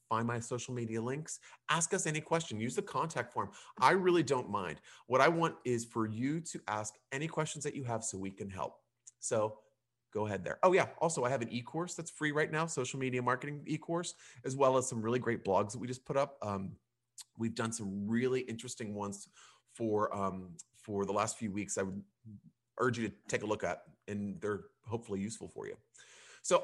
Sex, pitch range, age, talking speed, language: male, 110-155 Hz, 30-49, 215 wpm, English